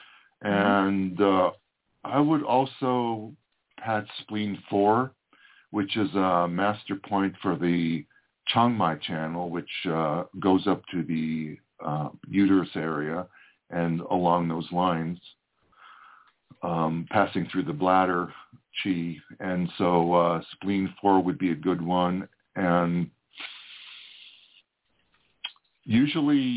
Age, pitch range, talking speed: 50-69, 90-105 Hz, 110 wpm